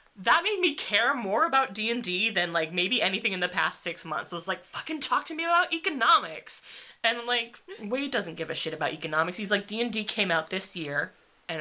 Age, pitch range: 20-39, 165-235 Hz